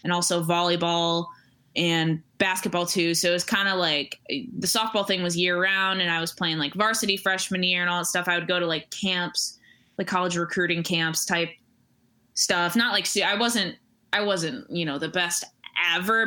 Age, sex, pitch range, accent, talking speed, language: 20-39, female, 165-195 Hz, American, 195 wpm, English